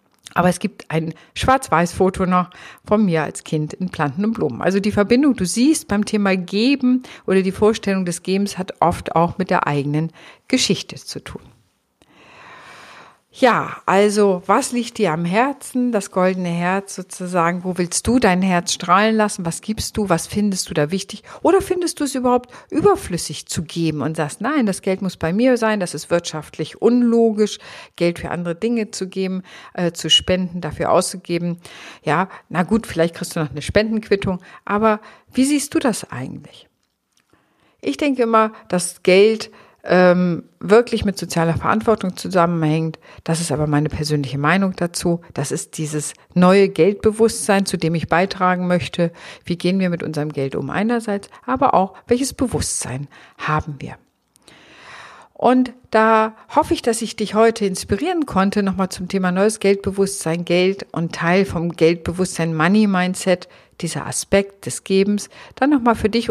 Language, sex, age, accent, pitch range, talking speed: German, female, 50-69, German, 170-215 Hz, 165 wpm